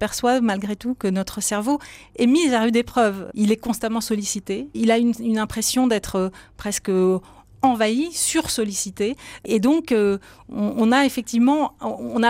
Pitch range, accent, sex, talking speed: 205-240 Hz, French, female, 155 wpm